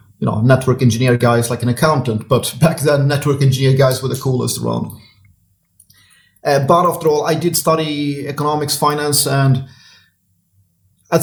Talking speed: 155 wpm